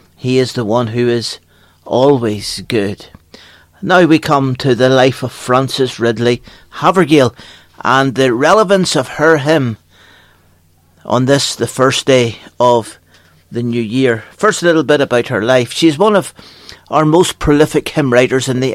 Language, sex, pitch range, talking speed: English, male, 110-140 Hz, 160 wpm